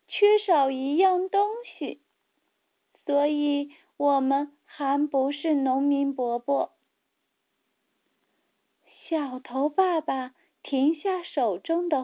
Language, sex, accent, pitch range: Chinese, female, native, 270-365 Hz